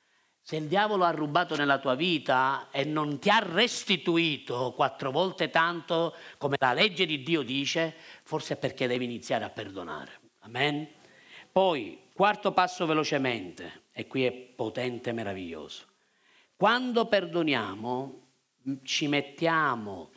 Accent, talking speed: native, 130 wpm